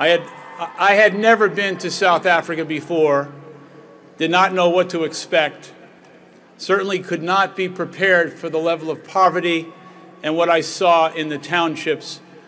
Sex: male